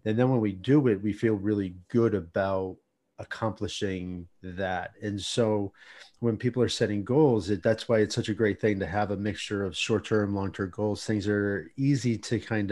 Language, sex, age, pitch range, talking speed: English, male, 30-49, 100-115 Hz, 190 wpm